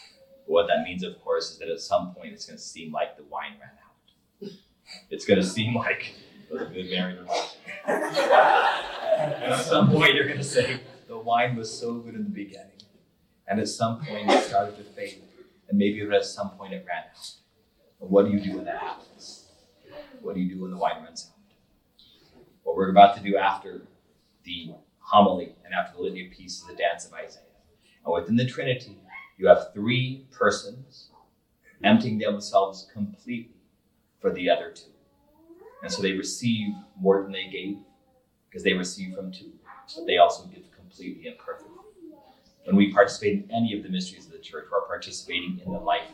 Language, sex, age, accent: English, male, 30-49, American